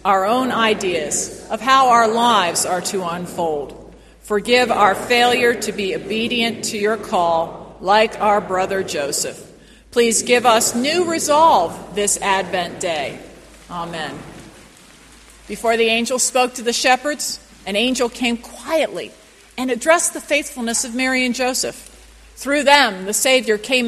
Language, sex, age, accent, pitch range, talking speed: English, female, 50-69, American, 205-275 Hz, 140 wpm